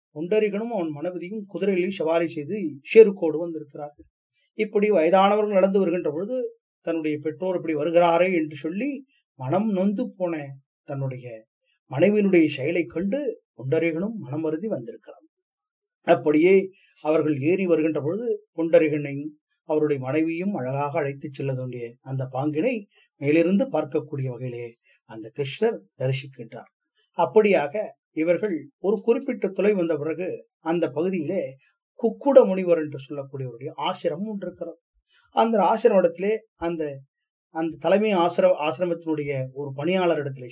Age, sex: 30-49, male